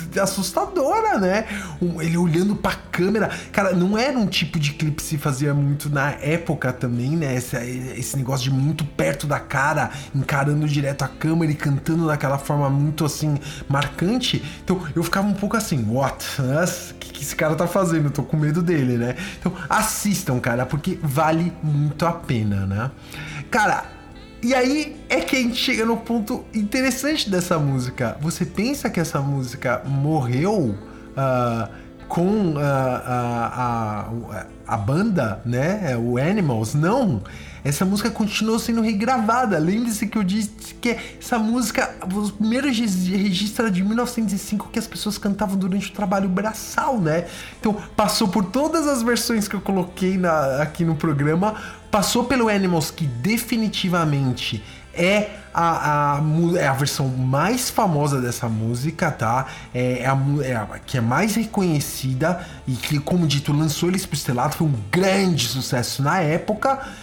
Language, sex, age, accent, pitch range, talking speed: English, male, 20-39, Brazilian, 140-205 Hz, 160 wpm